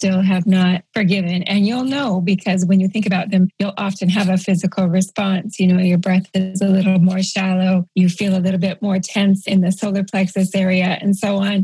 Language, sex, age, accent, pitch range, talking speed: English, female, 30-49, American, 190-225 Hz, 220 wpm